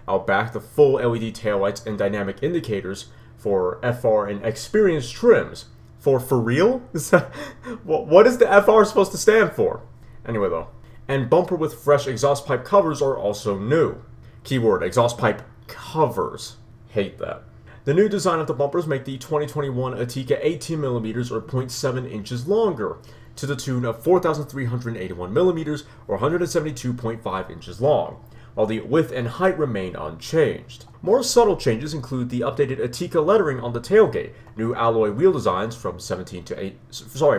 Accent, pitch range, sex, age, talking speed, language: American, 115-160 Hz, male, 30-49, 155 wpm, English